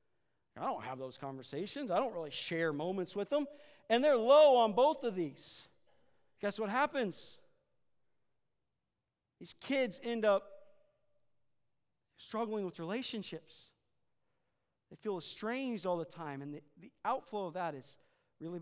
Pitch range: 165-240 Hz